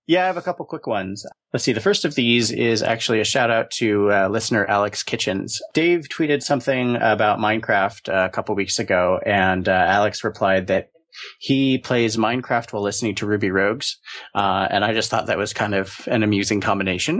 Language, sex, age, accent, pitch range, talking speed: English, male, 30-49, American, 100-125 Hz, 200 wpm